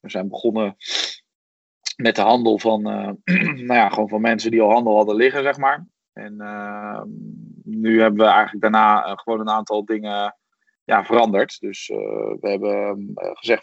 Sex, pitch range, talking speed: male, 105-125 Hz, 145 wpm